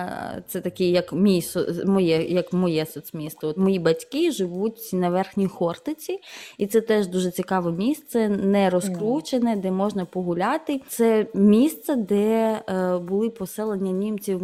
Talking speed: 120 wpm